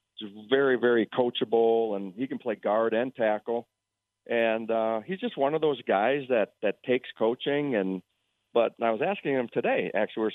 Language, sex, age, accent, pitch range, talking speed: English, male, 50-69, American, 100-115 Hz, 185 wpm